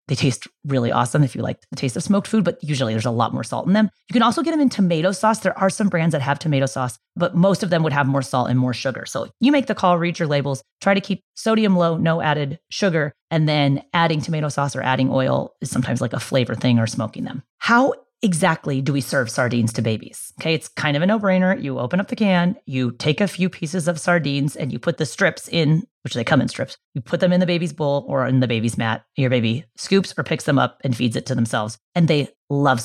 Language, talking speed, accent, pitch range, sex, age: English, 265 wpm, American, 135-190 Hz, female, 30-49